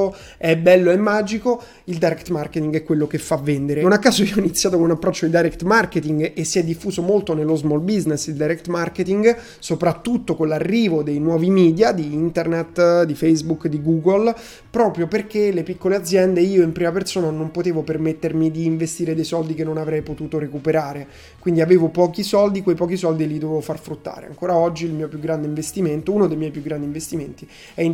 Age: 20-39